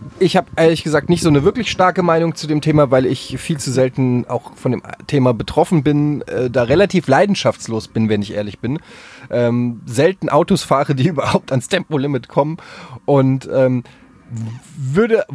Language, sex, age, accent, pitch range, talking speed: German, male, 30-49, German, 130-175 Hz, 175 wpm